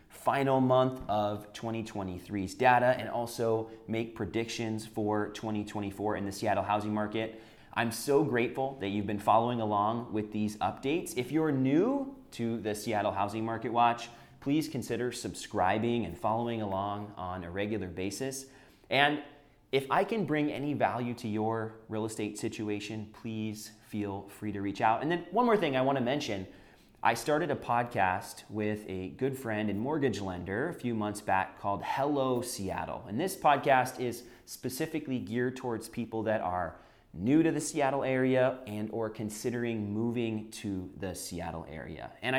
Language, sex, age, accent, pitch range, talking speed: English, male, 30-49, American, 100-125 Hz, 165 wpm